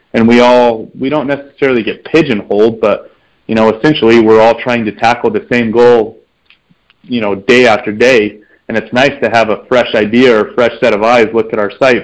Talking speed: 215 wpm